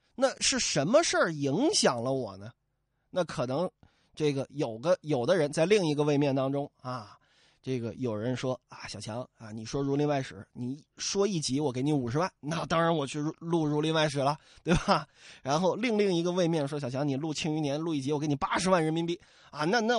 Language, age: Chinese, 20-39